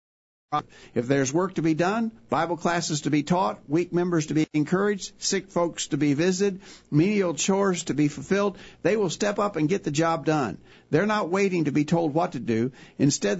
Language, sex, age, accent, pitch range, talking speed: English, male, 60-79, American, 150-190 Hz, 200 wpm